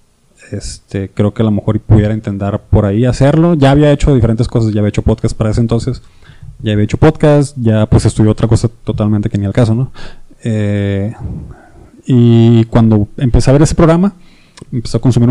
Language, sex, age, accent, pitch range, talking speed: Spanish, male, 20-39, Mexican, 105-130 Hz, 190 wpm